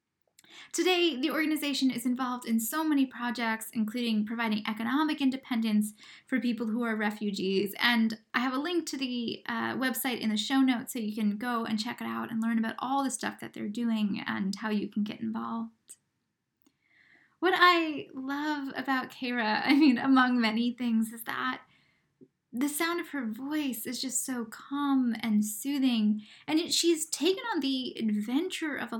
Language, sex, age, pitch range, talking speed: English, female, 10-29, 225-285 Hz, 175 wpm